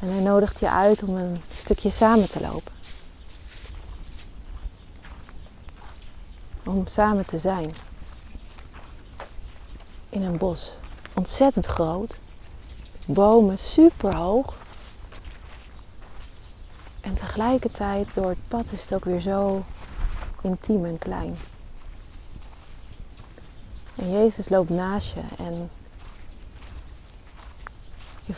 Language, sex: Dutch, female